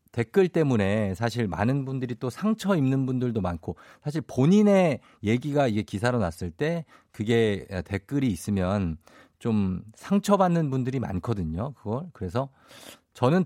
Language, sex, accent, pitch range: Korean, male, native, 100-150 Hz